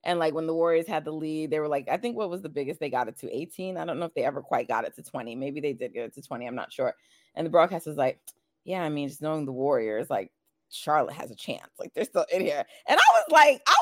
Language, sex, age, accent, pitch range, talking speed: English, female, 20-39, American, 150-235 Hz, 305 wpm